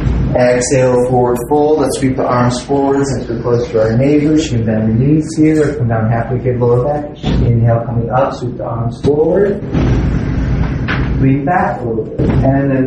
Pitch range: 115-135 Hz